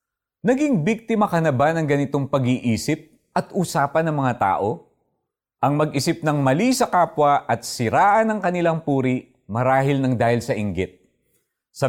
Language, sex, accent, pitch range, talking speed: Filipino, male, native, 115-170 Hz, 150 wpm